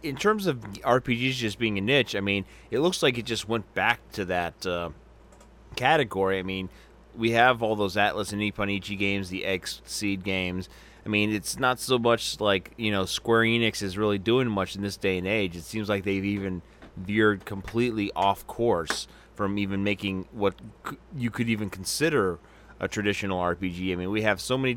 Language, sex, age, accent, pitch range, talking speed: English, male, 30-49, American, 95-110 Hz, 195 wpm